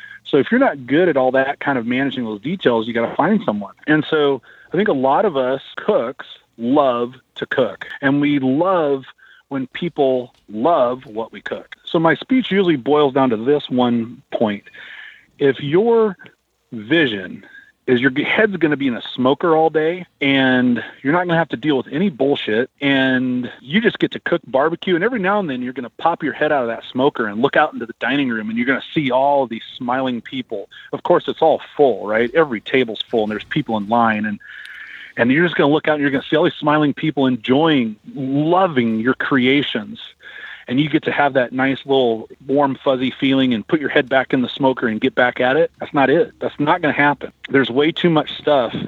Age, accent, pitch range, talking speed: 30-49, American, 120-160 Hz, 220 wpm